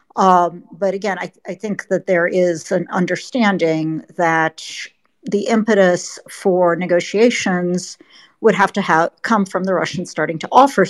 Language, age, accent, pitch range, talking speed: English, 50-69, American, 175-200 Hz, 145 wpm